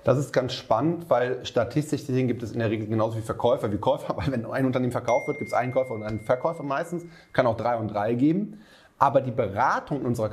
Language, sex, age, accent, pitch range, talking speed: German, male, 30-49, German, 110-150 Hz, 240 wpm